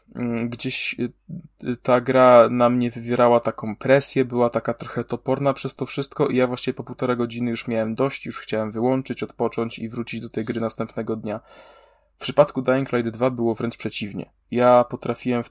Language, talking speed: Polish, 180 wpm